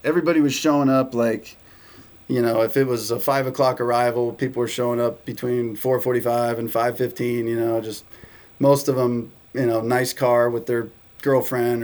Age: 20-39